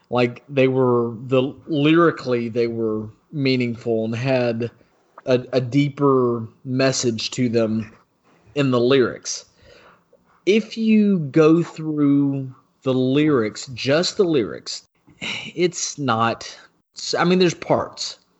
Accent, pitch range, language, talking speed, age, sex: American, 115-145 Hz, English, 110 wpm, 30-49, male